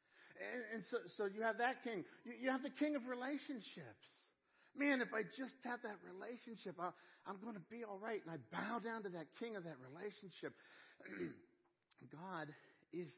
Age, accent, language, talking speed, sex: 60-79, American, English, 180 wpm, male